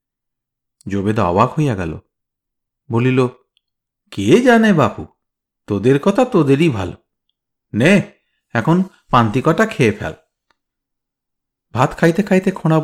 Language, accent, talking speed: Bengali, native, 100 wpm